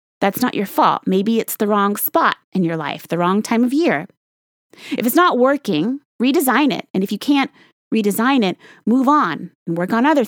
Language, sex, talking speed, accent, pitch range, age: English, female, 205 wpm, American, 185-255 Hz, 30-49